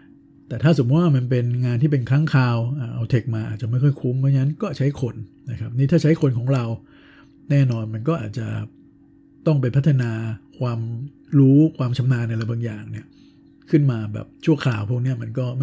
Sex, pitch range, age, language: male, 115-140 Hz, 60-79, Thai